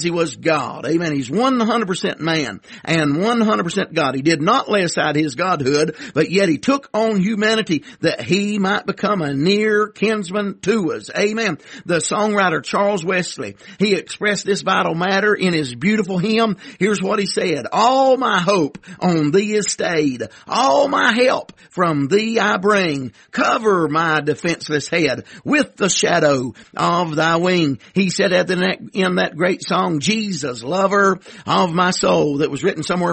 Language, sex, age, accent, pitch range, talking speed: English, male, 50-69, American, 165-205 Hz, 165 wpm